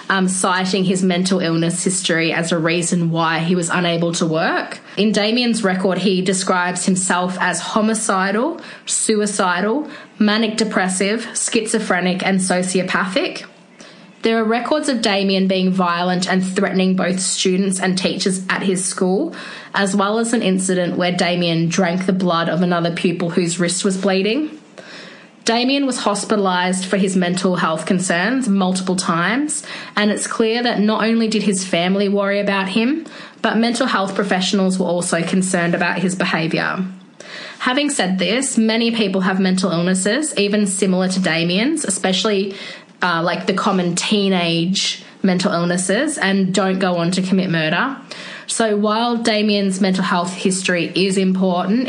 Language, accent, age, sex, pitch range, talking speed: English, Australian, 20-39, female, 180-210 Hz, 150 wpm